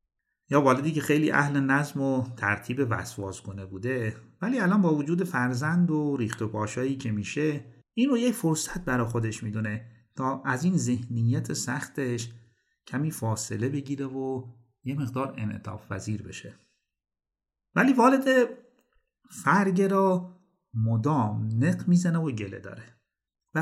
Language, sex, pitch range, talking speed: Persian, male, 115-170 Hz, 135 wpm